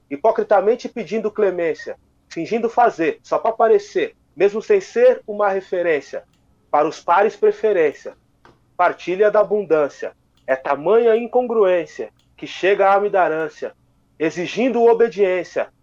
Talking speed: 110 wpm